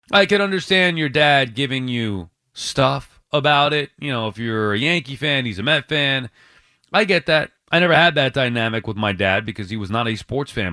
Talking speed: 220 wpm